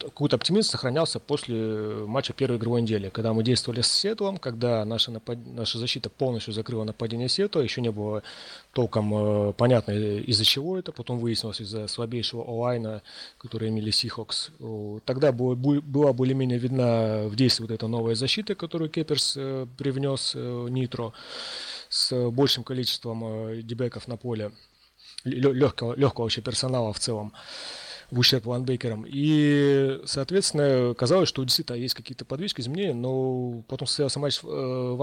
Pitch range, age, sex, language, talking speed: 110-135 Hz, 30-49, male, Russian, 140 wpm